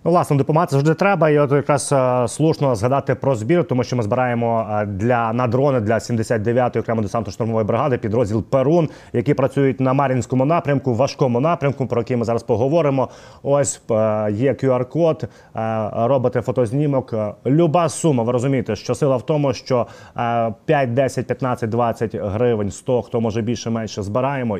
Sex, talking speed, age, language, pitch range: male, 150 wpm, 30-49, Ukrainian, 115-140 Hz